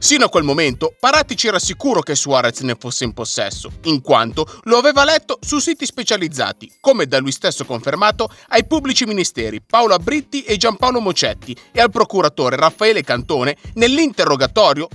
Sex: male